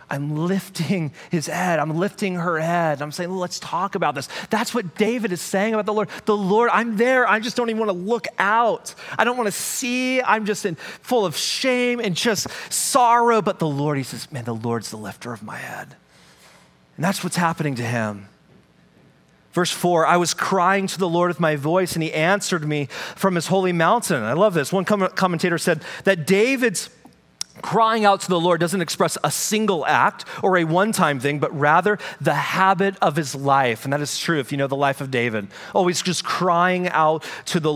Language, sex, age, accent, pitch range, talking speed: English, male, 30-49, American, 130-190 Hz, 210 wpm